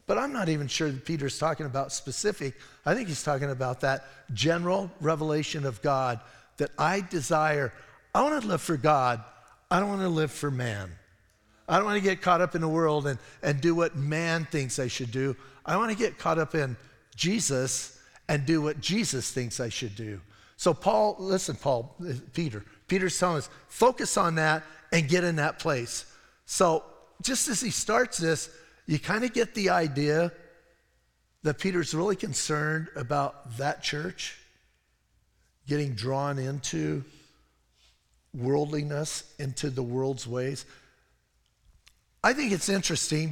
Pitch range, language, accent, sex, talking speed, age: 130-170 Hz, English, American, male, 165 wpm, 50-69